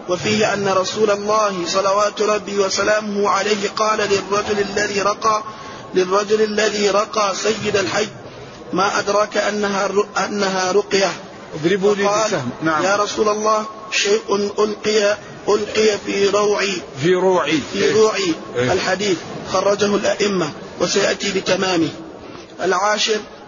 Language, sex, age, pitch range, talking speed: Arabic, male, 30-49, 195-210 Hz, 100 wpm